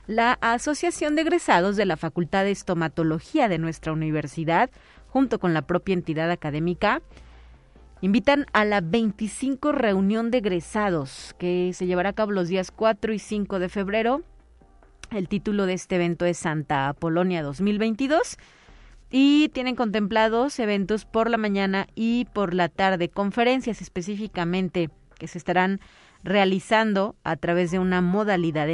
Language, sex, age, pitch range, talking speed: Spanish, female, 40-59, 175-225 Hz, 140 wpm